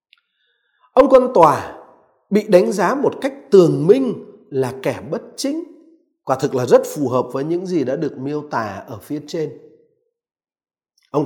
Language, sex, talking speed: Vietnamese, male, 165 wpm